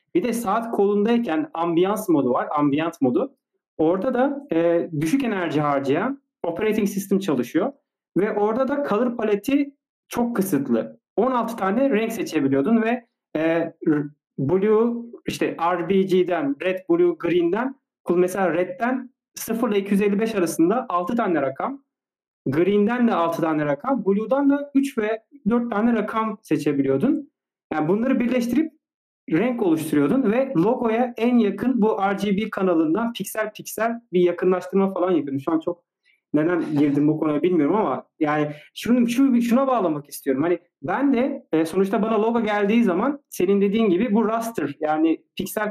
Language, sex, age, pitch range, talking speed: Turkish, male, 40-59, 170-245 Hz, 140 wpm